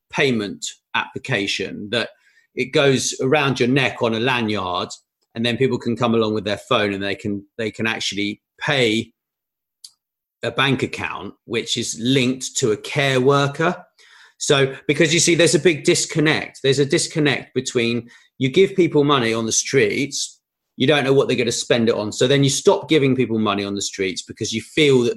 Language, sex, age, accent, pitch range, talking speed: English, male, 40-59, British, 115-150 Hz, 190 wpm